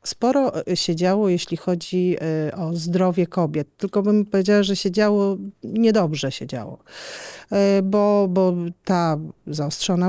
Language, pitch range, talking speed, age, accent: Polish, 175-205 Hz, 125 wpm, 40-59, native